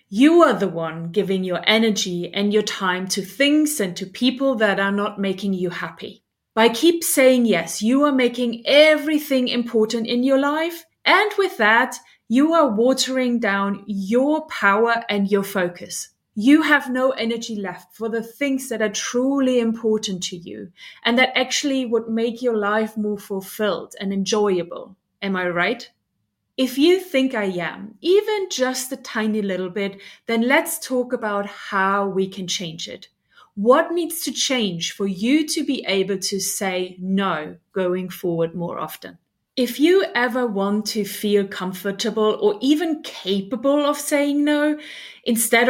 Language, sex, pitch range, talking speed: English, female, 200-265 Hz, 160 wpm